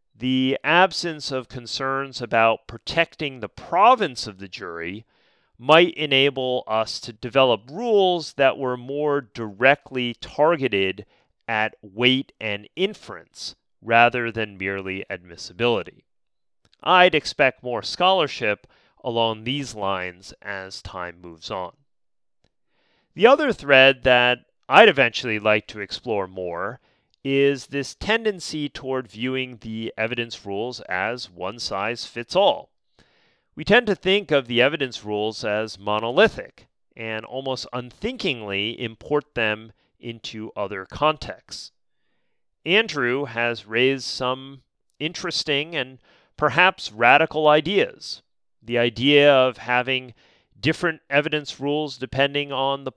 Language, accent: English, American